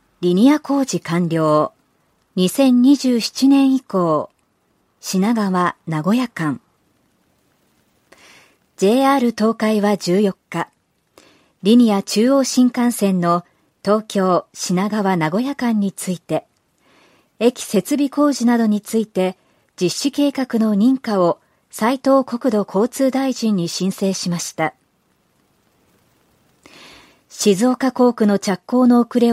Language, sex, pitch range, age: Japanese, male, 185-250 Hz, 40-59